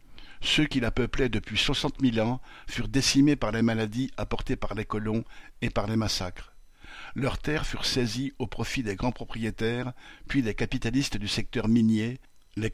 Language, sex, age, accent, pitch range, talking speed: French, male, 50-69, French, 110-130 Hz, 175 wpm